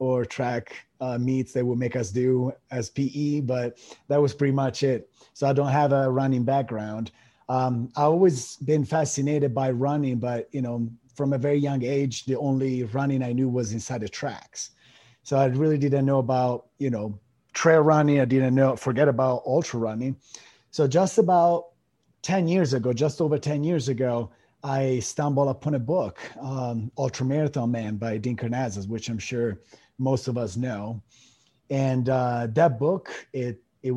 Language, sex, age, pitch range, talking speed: English, male, 30-49, 120-140 Hz, 175 wpm